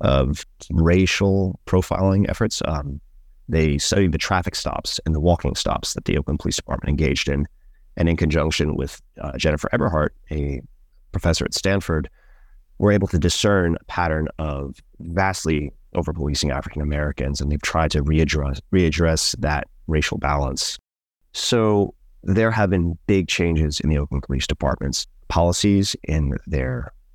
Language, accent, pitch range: English, American, 75-90 Hz